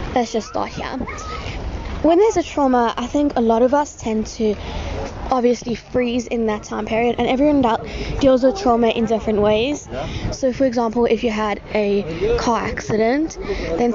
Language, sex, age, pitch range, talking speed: English, female, 10-29, 220-260 Hz, 170 wpm